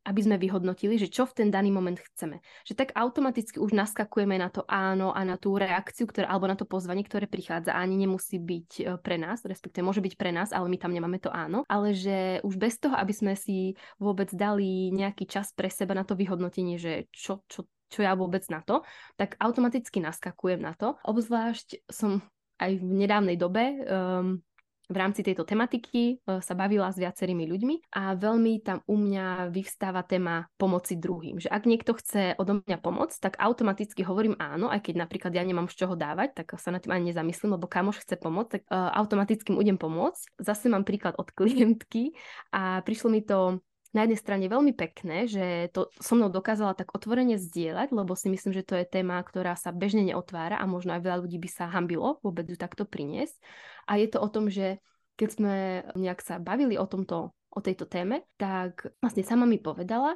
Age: 10-29